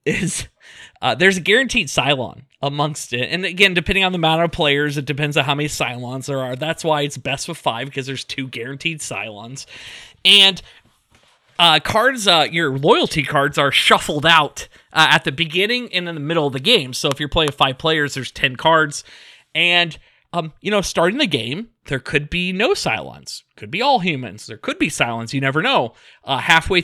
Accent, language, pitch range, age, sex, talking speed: American, English, 140-180 Hz, 20-39, male, 200 wpm